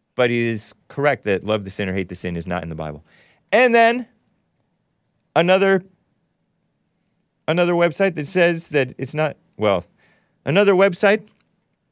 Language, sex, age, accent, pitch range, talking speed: English, male, 30-49, American, 110-165 Hz, 145 wpm